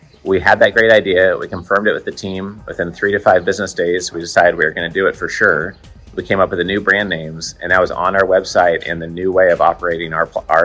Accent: American